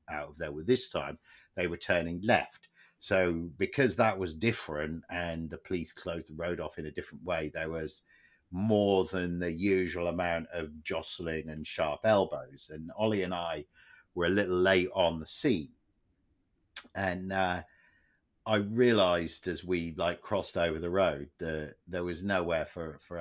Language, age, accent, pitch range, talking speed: English, 50-69, British, 80-100 Hz, 170 wpm